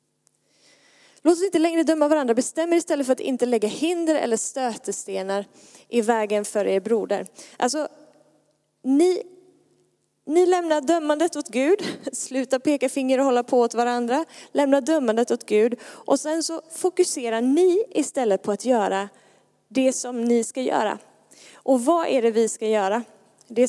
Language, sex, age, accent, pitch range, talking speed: Swedish, female, 20-39, native, 225-295 Hz, 155 wpm